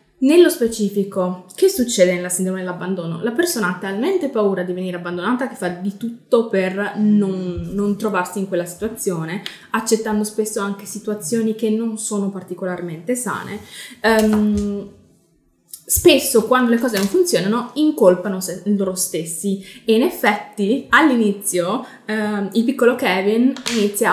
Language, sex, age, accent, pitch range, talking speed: Italian, female, 20-39, native, 185-230 Hz, 130 wpm